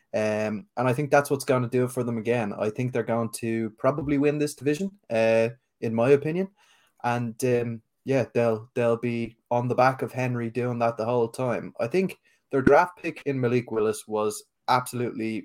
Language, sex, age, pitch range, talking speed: English, male, 20-39, 110-125 Hz, 200 wpm